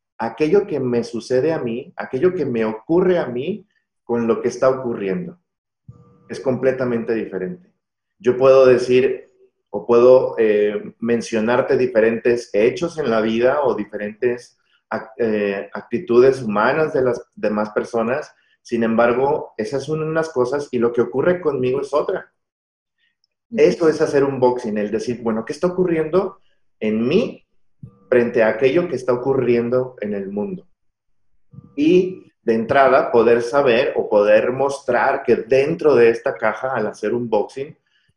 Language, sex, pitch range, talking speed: Spanish, male, 115-155 Hz, 150 wpm